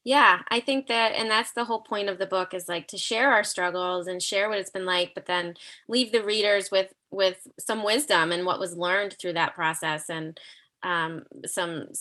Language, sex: English, female